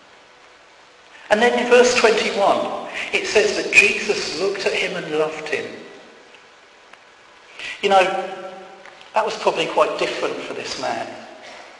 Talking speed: 125 wpm